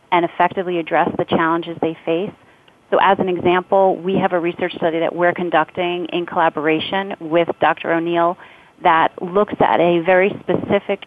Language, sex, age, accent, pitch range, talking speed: English, female, 30-49, American, 165-195 Hz, 165 wpm